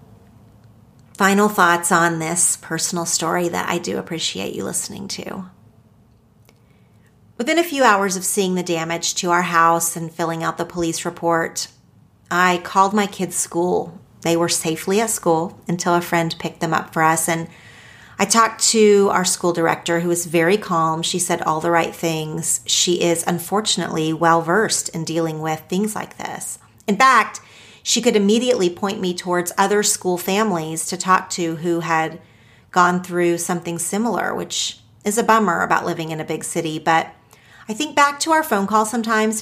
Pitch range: 160-200 Hz